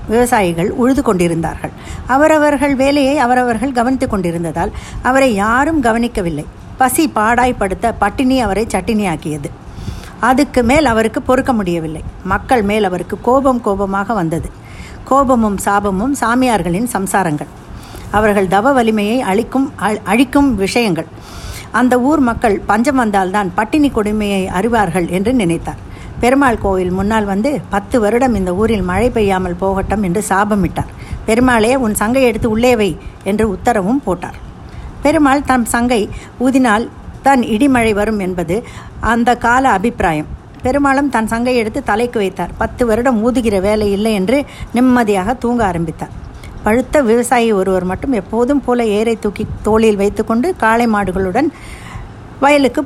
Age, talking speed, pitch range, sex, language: 60-79, 120 wpm, 195-250 Hz, female, Tamil